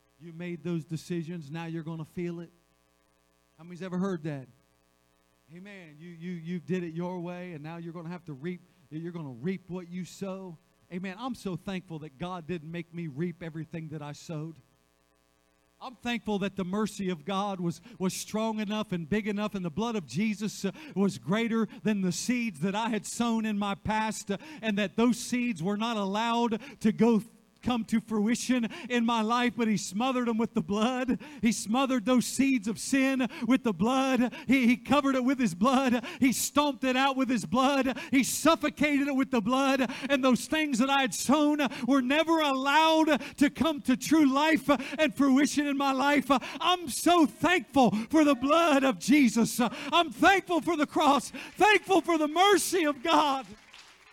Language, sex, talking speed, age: English, male, 195 wpm, 40-59